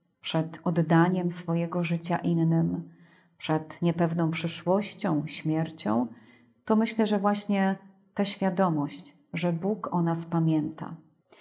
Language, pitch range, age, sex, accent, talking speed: Polish, 170-210 Hz, 30-49, female, native, 105 wpm